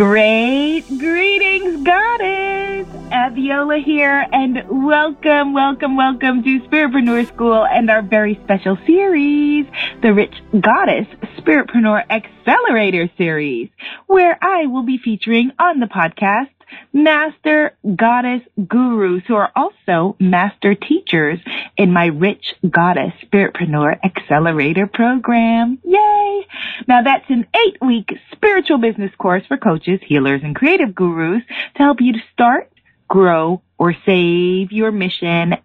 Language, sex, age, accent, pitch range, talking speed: English, female, 30-49, American, 190-285 Hz, 120 wpm